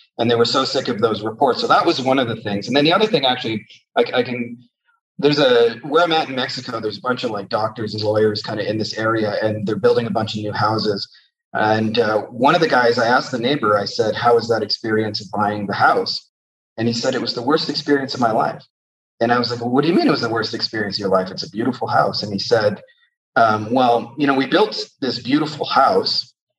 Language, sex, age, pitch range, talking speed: English, male, 30-49, 110-135 Hz, 260 wpm